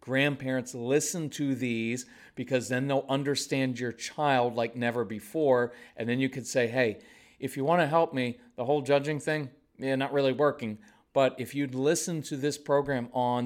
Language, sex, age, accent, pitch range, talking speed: English, male, 40-59, American, 120-145 Hz, 185 wpm